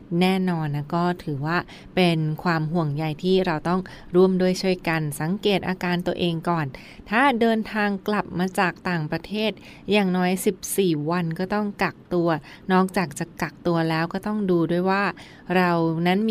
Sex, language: female, Thai